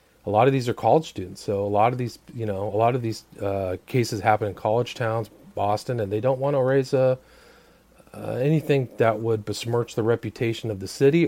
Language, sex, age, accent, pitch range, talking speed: English, male, 40-59, American, 105-130 Hz, 225 wpm